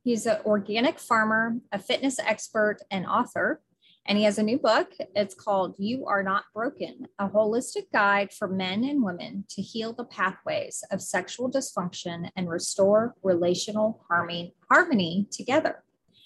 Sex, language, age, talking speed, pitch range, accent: female, English, 30-49, 150 wpm, 195-250 Hz, American